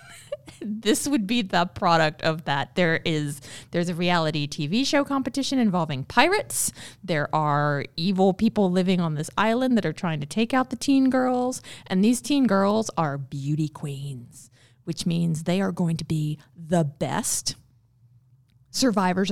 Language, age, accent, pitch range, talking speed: English, 30-49, American, 150-205 Hz, 155 wpm